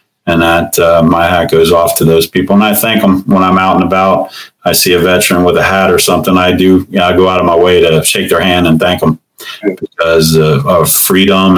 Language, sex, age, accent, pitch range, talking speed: English, male, 40-59, American, 85-95 Hz, 255 wpm